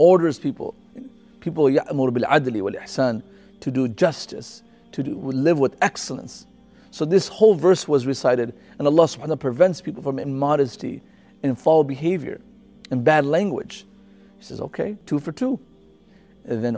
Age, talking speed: 40-59, 145 wpm